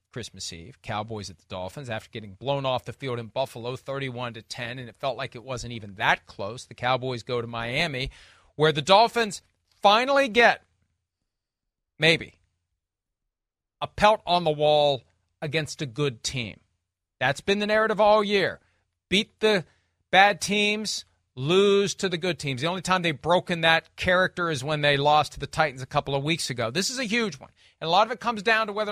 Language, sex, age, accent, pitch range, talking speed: English, male, 40-59, American, 125-185 Hz, 195 wpm